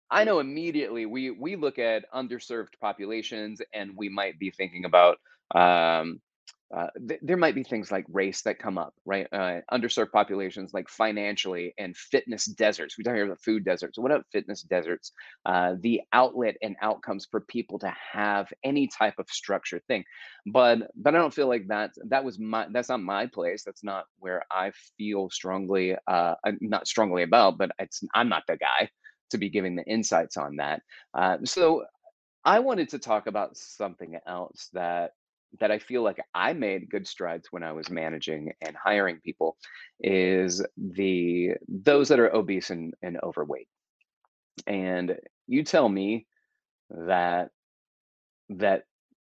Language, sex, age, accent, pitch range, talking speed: English, male, 30-49, American, 90-120 Hz, 165 wpm